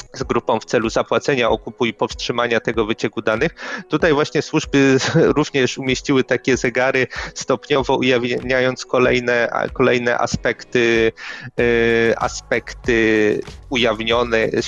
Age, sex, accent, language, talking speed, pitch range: 30-49, male, native, Polish, 105 wpm, 115-145 Hz